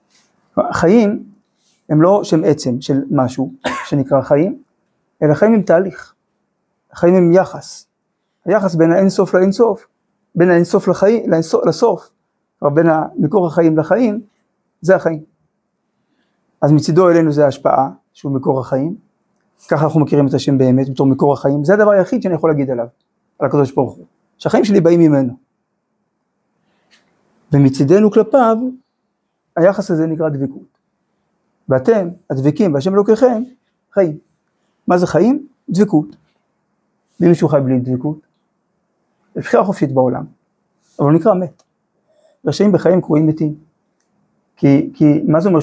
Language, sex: Hebrew, male